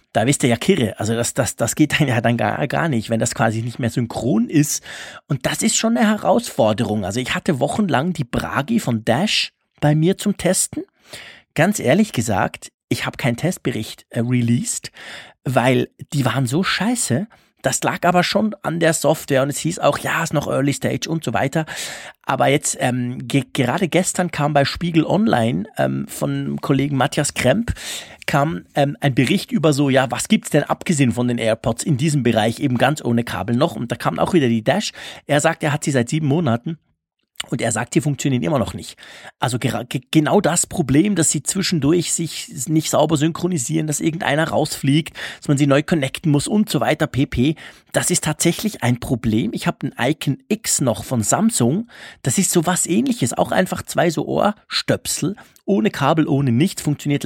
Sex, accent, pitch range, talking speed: male, German, 120-165 Hz, 200 wpm